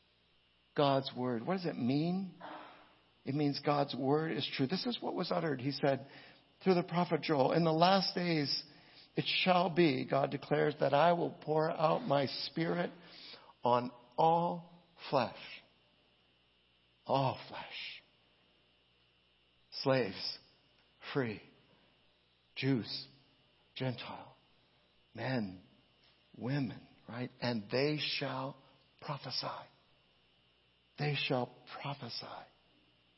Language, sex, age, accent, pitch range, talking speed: English, male, 60-79, American, 115-165 Hz, 105 wpm